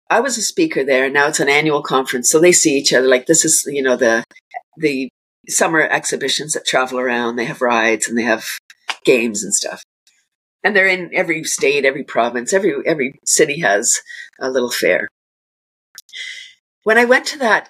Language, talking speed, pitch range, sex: English, 190 wpm, 155-210 Hz, female